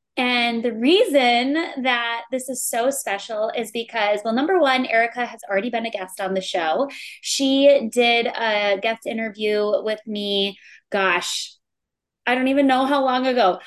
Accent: American